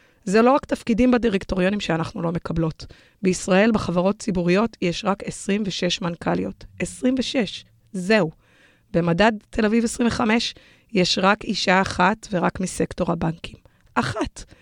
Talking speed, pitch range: 120 wpm, 180-225 Hz